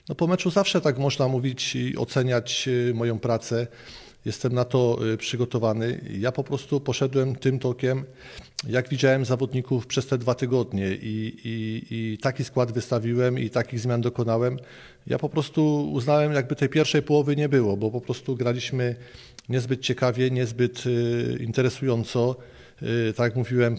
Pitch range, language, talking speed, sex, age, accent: 120-135 Hz, Polish, 145 wpm, male, 40-59, native